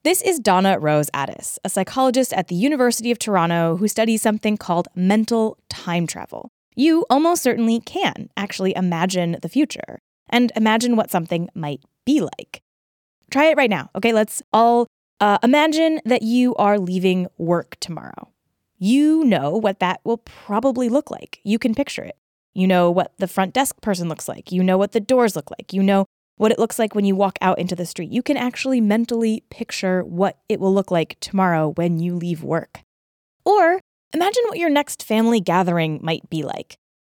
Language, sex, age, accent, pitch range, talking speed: English, female, 20-39, American, 190-270 Hz, 185 wpm